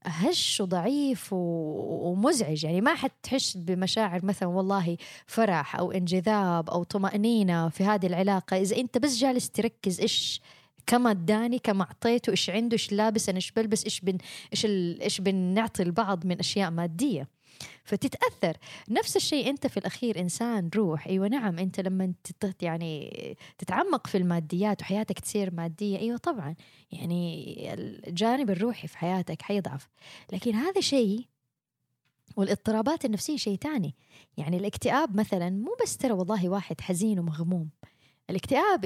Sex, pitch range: female, 175-225 Hz